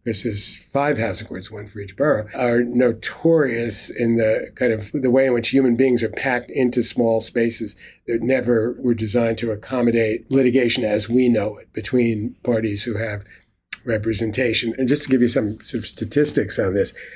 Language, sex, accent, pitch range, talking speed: English, male, American, 110-130 Hz, 185 wpm